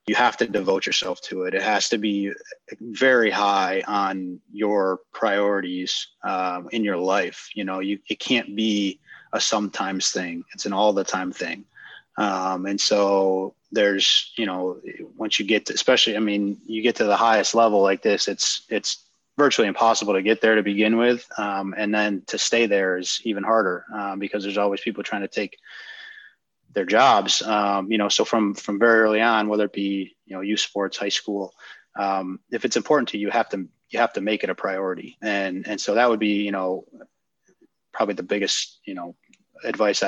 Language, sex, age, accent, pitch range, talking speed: English, male, 20-39, American, 95-110 Hz, 200 wpm